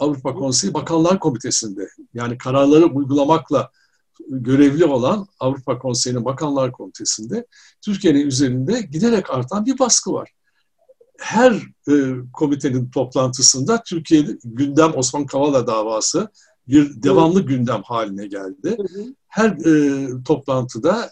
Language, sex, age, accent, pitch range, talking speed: Turkish, male, 60-79, native, 130-200 Hz, 105 wpm